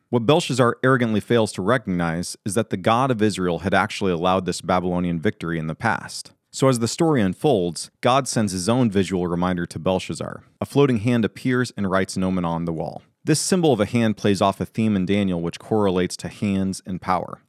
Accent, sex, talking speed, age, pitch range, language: American, male, 210 wpm, 30-49, 95-120 Hz, English